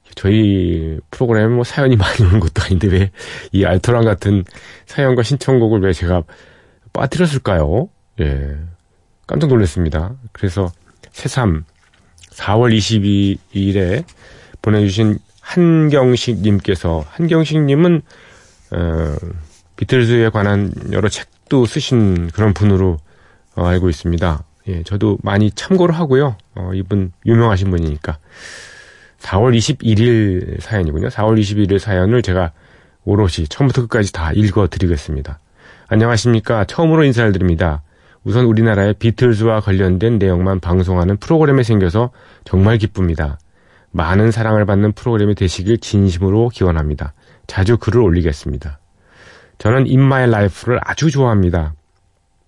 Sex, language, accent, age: male, Korean, native, 40-59